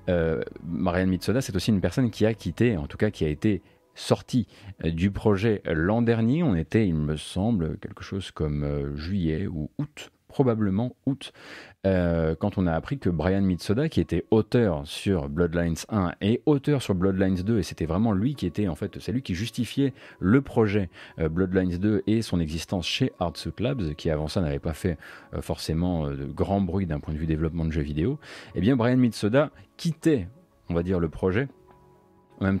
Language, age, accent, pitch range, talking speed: French, 30-49, French, 85-115 Hz, 190 wpm